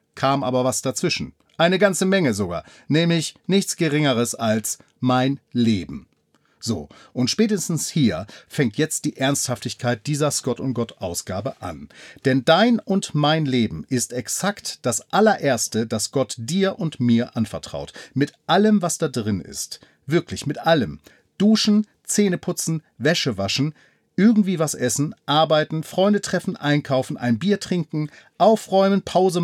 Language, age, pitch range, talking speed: German, 40-59, 130-180 Hz, 140 wpm